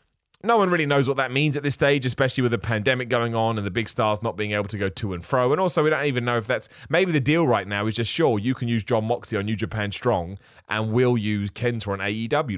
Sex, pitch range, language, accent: male, 100-135 Hz, English, British